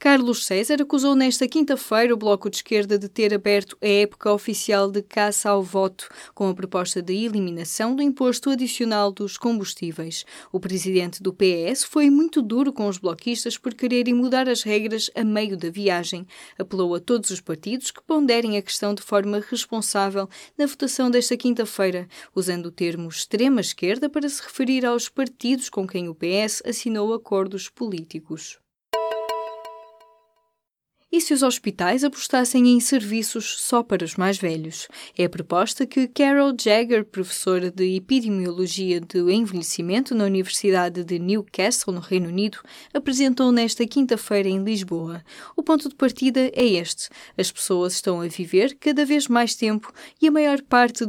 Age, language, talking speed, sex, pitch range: 20-39, Portuguese, 155 wpm, female, 185-245 Hz